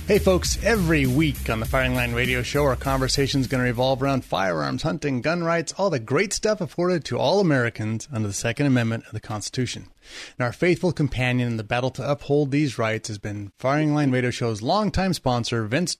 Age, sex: 30-49, male